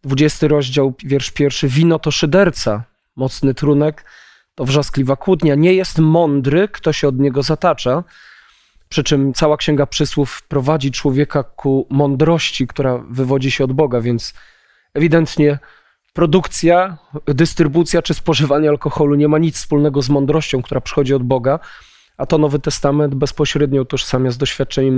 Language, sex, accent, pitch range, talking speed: Polish, male, native, 135-155 Hz, 140 wpm